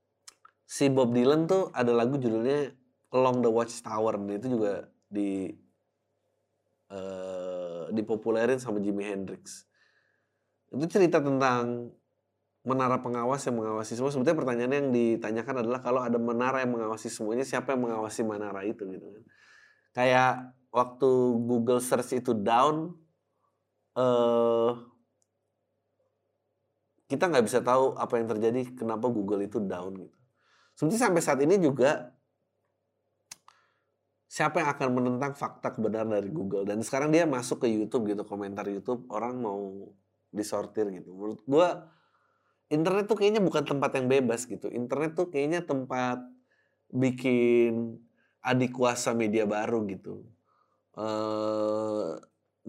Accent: native